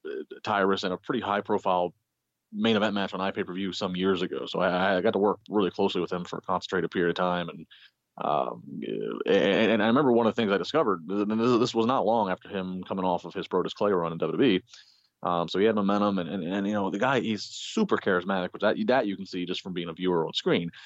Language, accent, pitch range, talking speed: English, American, 90-110 Hz, 240 wpm